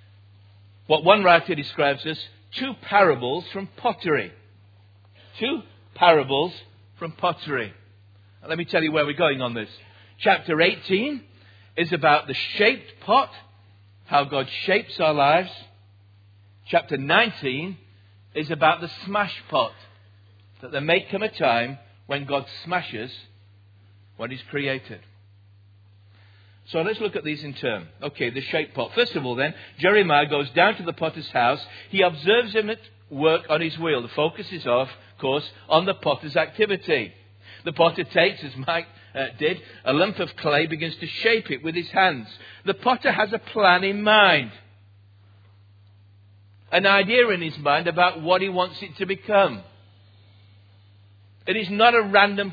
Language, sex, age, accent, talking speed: English, male, 40-59, British, 155 wpm